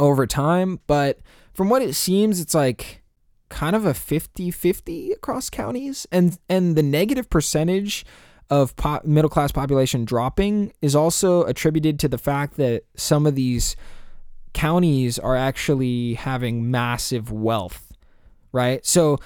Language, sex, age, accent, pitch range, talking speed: English, male, 20-39, American, 120-160 Hz, 135 wpm